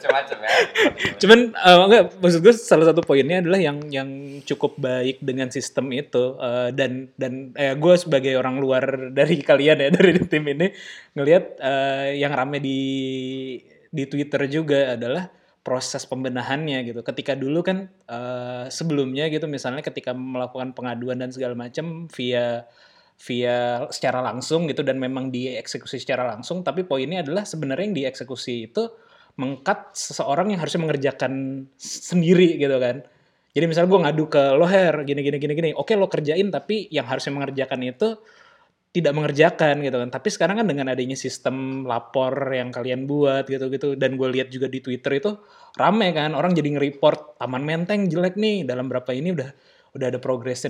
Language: Indonesian